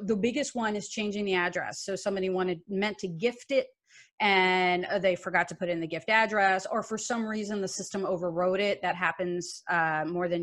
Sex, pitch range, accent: female, 180-225 Hz, American